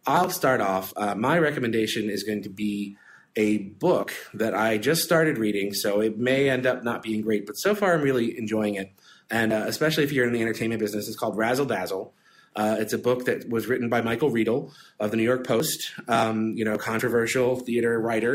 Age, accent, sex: 30-49, American, male